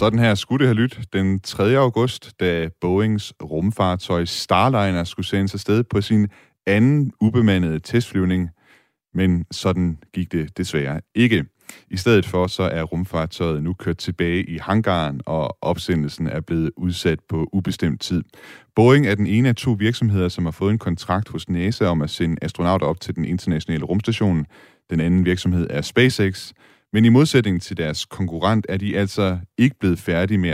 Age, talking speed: 30-49, 175 wpm